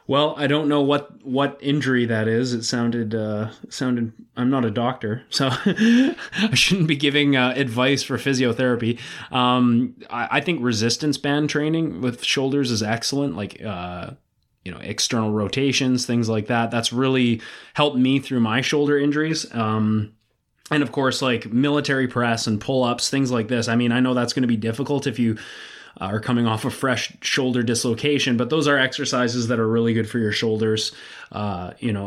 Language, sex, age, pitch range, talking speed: English, male, 20-39, 115-140 Hz, 185 wpm